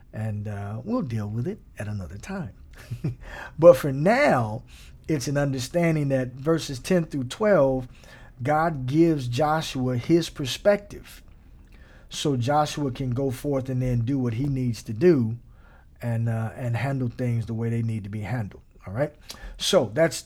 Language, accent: English, American